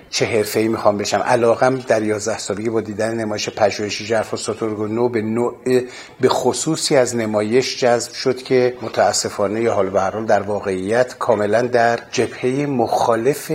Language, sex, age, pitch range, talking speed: Persian, male, 50-69, 105-130 Hz, 135 wpm